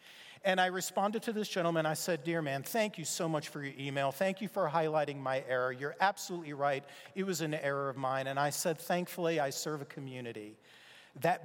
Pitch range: 150-190 Hz